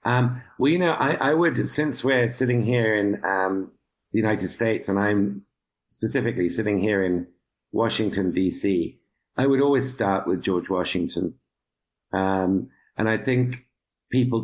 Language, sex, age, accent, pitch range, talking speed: English, male, 50-69, British, 90-110 Hz, 150 wpm